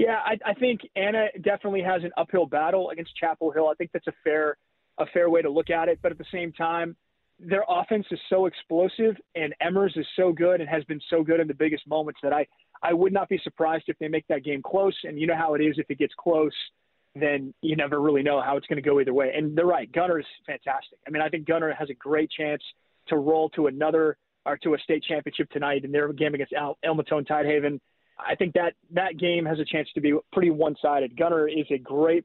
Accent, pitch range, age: American, 150-185 Hz, 30-49